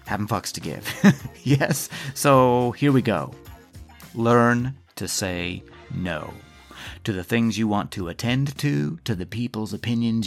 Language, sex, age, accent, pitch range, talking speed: English, male, 30-49, American, 95-125 Hz, 145 wpm